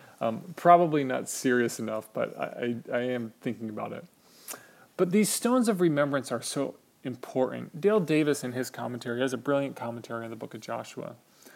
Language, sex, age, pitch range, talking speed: English, male, 30-49, 120-145 Hz, 180 wpm